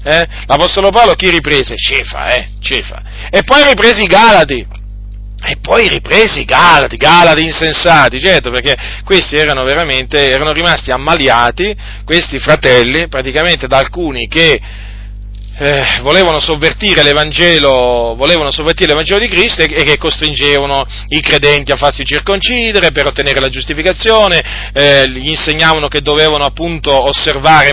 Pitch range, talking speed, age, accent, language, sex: 120-170 Hz, 130 wpm, 40-59, native, Italian, male